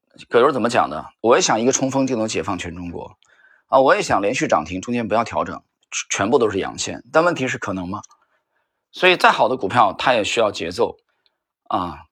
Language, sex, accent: Chinese, male, native